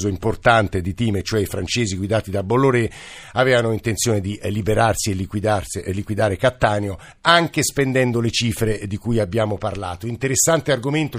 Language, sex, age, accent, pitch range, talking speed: Italian, male, 50-69, native, 105-135 Hz, 145 wpm